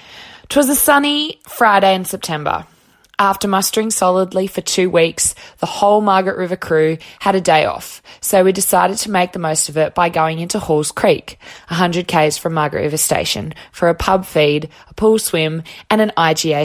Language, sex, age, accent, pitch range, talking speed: English, female, 20-39, Australian, 165-200 Hz, 185 wpm